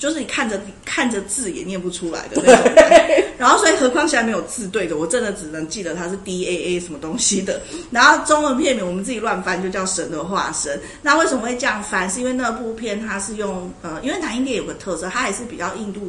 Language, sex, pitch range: Chinese, female, 175-235 Hz